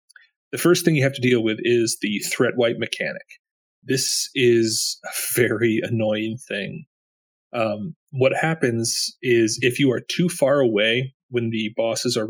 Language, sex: English, male